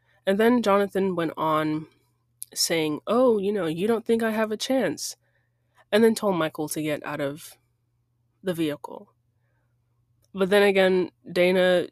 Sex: female